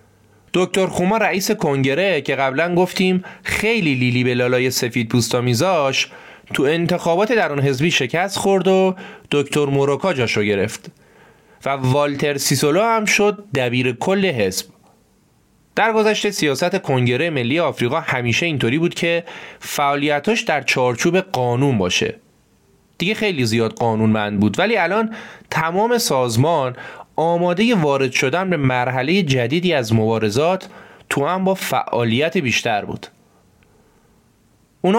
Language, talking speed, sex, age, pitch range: Persian, 120 wpm, male, 30-49, 125-190 Hz